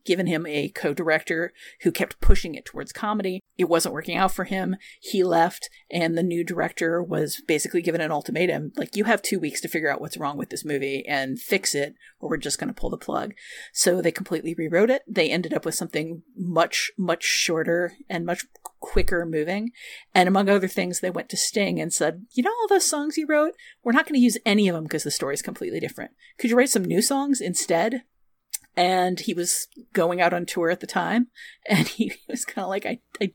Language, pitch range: English, 170-235 Hz